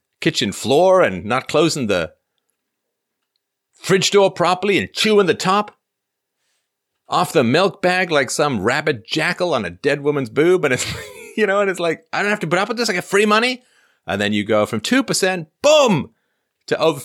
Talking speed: 195 wpm